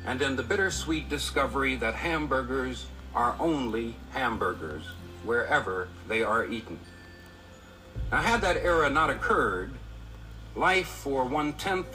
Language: English